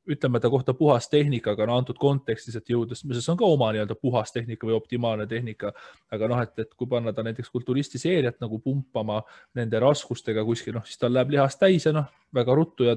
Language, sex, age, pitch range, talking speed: English, male, 20-39, 115-140 Hz, 185 wpm